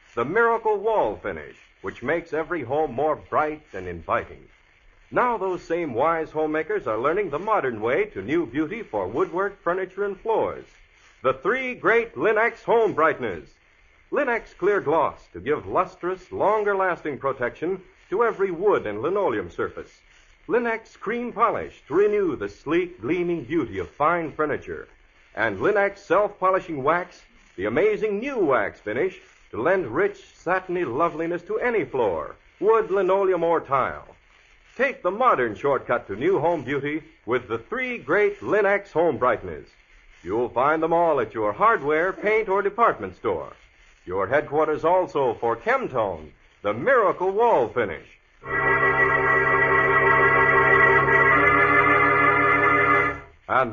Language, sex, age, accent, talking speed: English, male, 60-79, American, 135 wpm